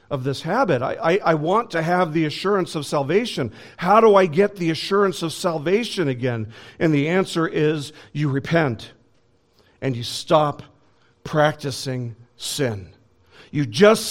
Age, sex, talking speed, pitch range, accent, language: 50-69, male, 150 wpm, 120-170 Hz, American, English